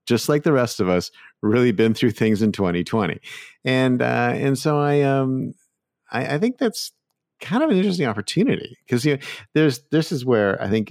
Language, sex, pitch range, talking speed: English, male, 95-145 Hz, 200 wpm